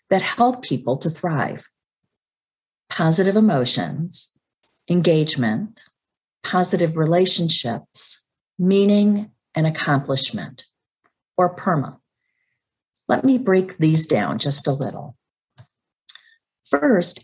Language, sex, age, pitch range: English, female, 50-69, 145-195 Hz